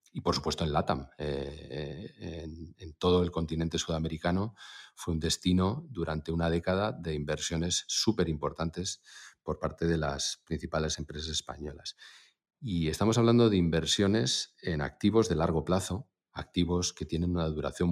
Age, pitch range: 40-59, 75-90 Hz